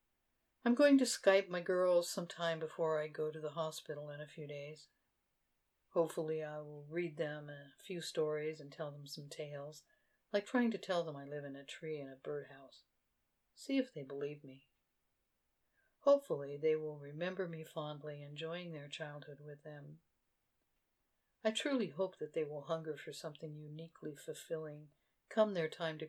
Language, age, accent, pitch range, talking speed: English, 60-79, American, 145-180 Hz, 170 wpm